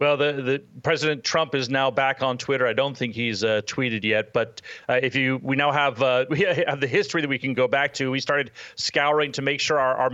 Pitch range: 125-155 Hz